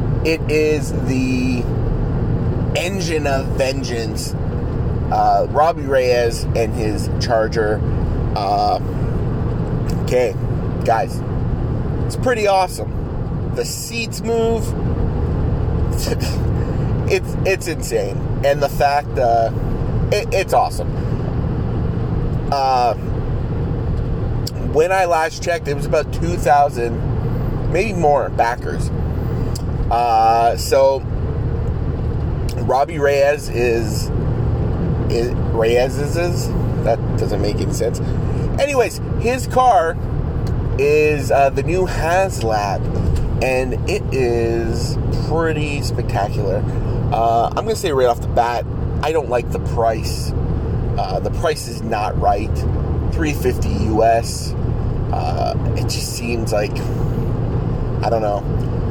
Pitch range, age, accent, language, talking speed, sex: 115-135 Hz, 30-49, American, English, 100 wpm, male